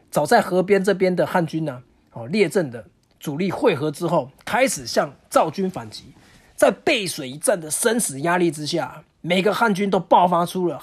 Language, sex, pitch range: Chinese, male, 150-205 Hz